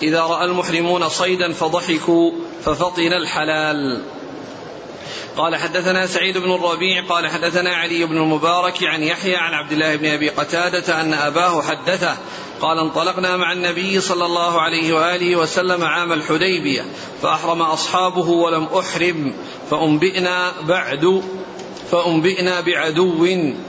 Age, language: 40-59, Arabic